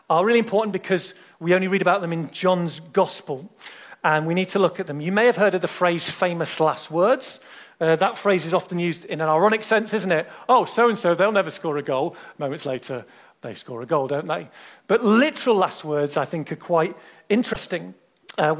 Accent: British